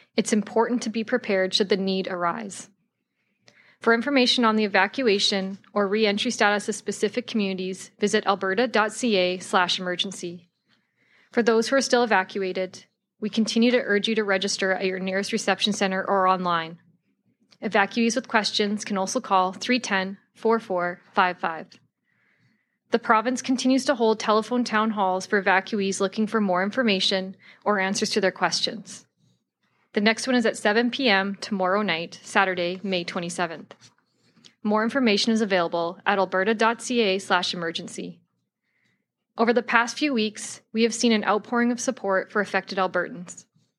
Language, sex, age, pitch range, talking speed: English, female, 20-39, 190-225 Hz, 145 wpm